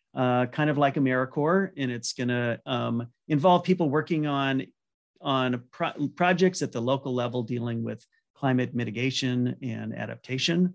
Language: English